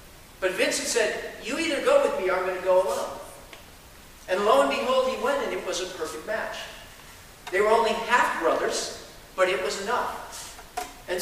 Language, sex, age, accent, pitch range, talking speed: English, male, 50-69, American, 190-245 Hz, 185 wpm